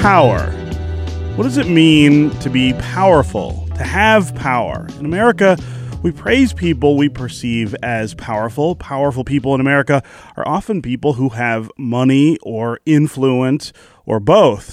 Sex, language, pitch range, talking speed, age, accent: male, English, 115-145 Hz, 140 wpm, 30-49, American